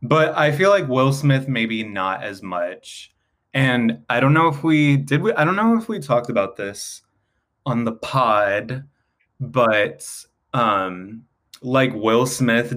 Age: 20-39